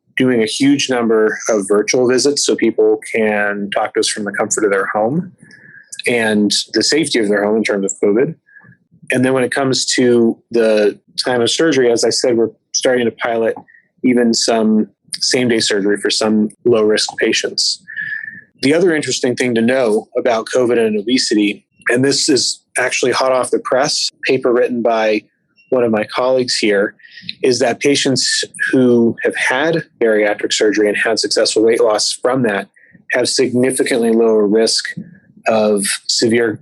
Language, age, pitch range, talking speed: English, 30-49, 110-145 Hz, 165 wpm